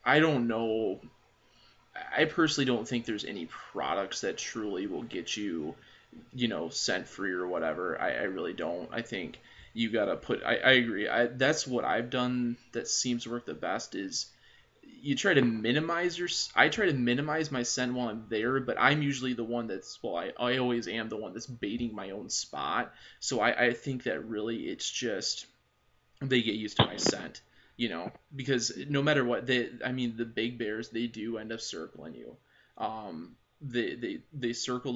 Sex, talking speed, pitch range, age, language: male, 205 wpm, 115-135 Hz, 20-39, English